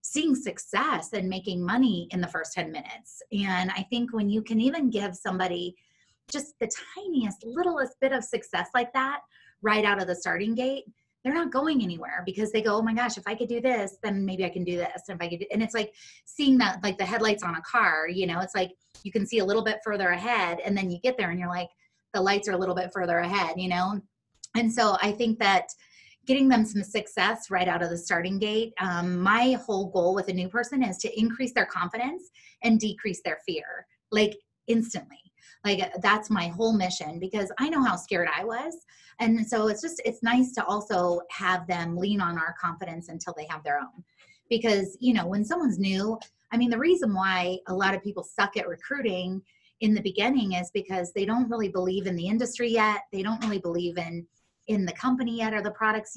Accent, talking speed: American, 225 wpm